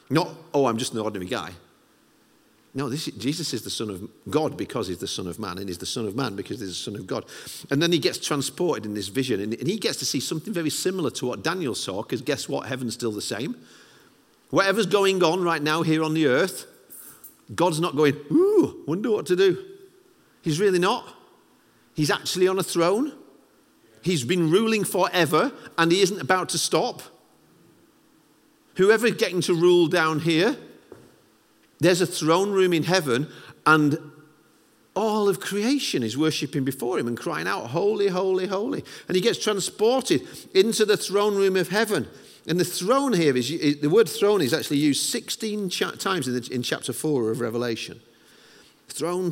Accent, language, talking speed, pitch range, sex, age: British, English, 185 wpm, 145-195 Hz, male, 50-69